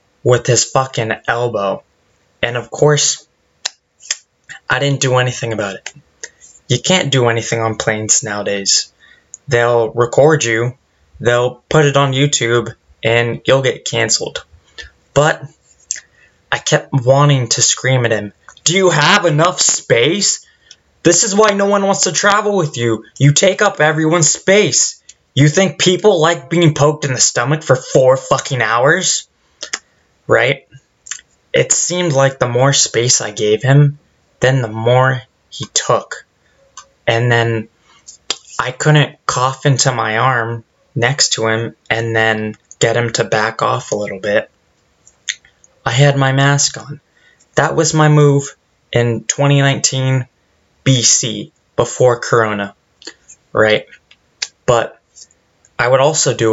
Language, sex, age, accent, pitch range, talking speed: English, male, 20-39, American, 115-150 Hz, 135 wpm